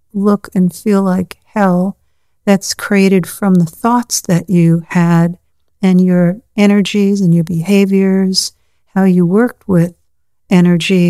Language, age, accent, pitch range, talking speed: English, 60-79, American, 170-195 Hz, 130 wpm